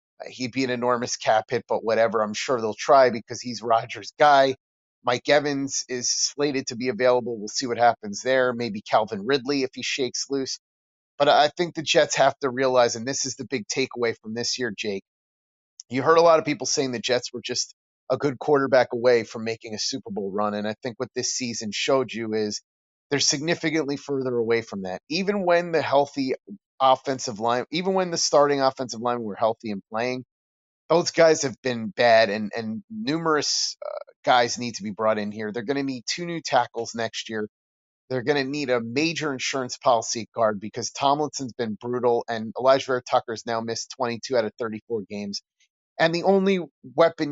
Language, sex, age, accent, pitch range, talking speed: English, male, 30-49, American, 115-140 Hz, 200 wpm